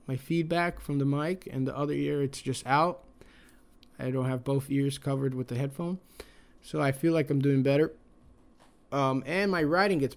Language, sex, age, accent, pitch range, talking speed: English, male, 20-39, American, 130-155 Hz, 195 wpm